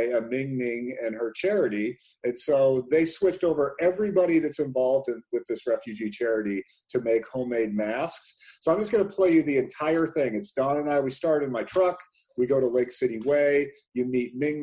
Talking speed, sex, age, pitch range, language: 205 wpm, male, 40-59, 125-150 Hz, English